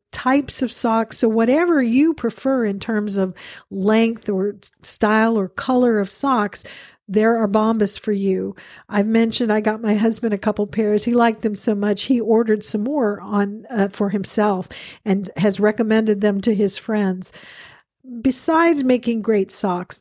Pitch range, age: 200-240 Hz, 50-69